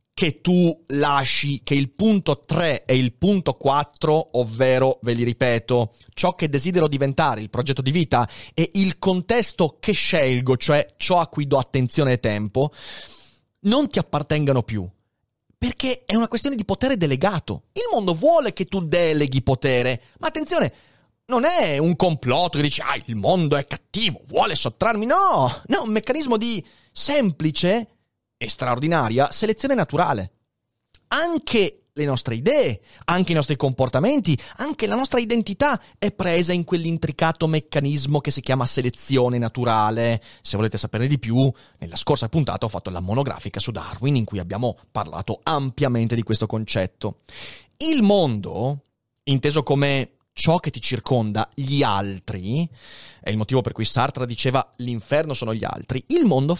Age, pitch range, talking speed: 30-49, 120-175 Hz, 155 wpm